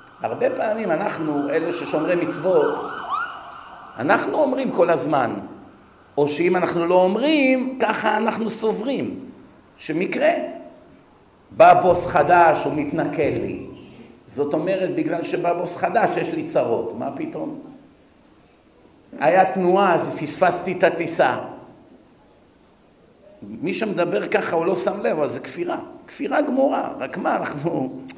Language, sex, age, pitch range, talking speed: Hebrew, male, 50-69, 165-245 Hz, 120 wpm